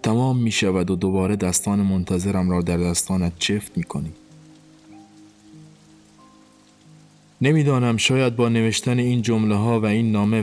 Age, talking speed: 20-39, 120 wpm